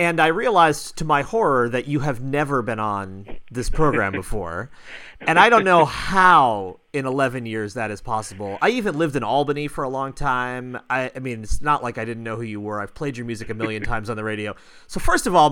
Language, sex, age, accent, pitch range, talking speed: English, male, 30-49, American, 110-145 Hz, 235 wpm